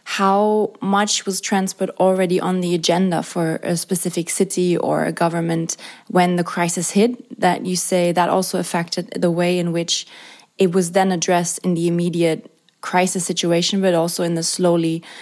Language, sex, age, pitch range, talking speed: English, female, 20-39, 175-200 Hz, 170 wpm